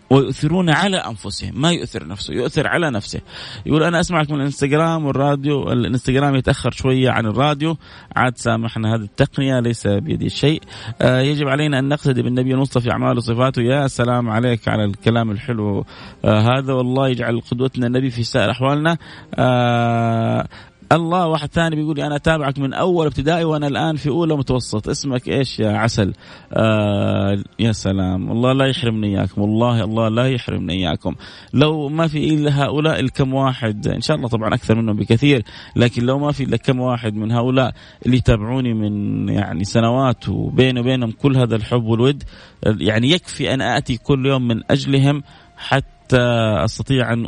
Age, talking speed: 30-49, 160 wpm